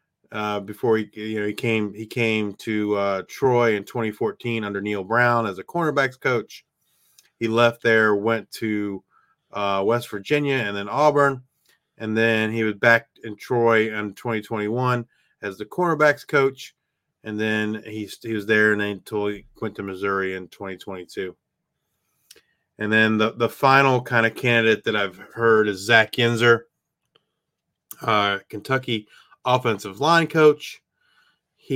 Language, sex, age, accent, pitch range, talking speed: English, male, 30-49, American, 105-125 Hz, 150 wpm